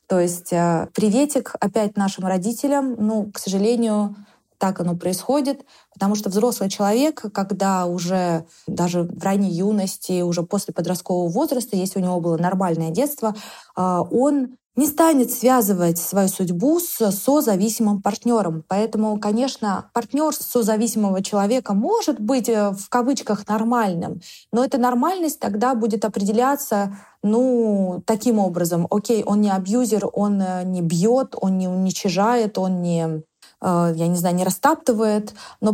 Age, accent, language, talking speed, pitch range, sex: 20-39, native, Russian, 130 wpm, 185-235 Hz, female